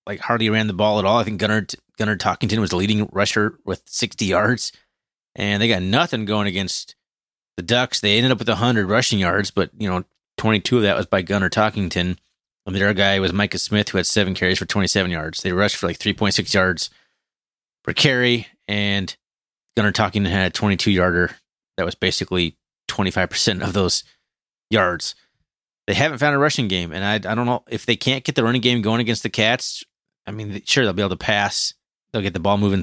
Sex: male